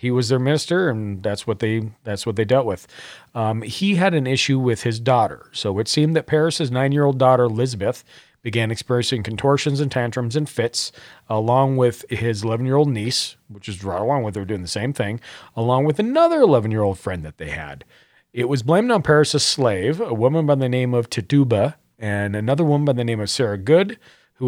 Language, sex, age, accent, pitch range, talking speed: English, male, 40-59, American, 105-135 Hz, 200 wpm